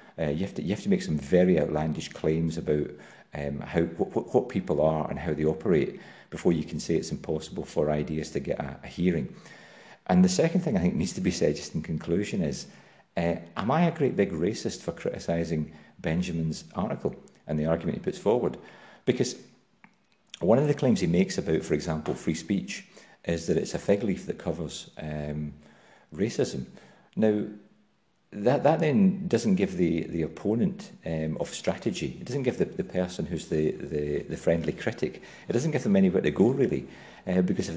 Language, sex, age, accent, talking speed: English, male, 40-59, British, 195 wpm